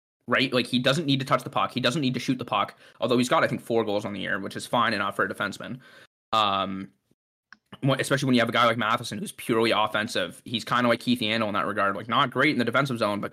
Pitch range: 110-125 Hz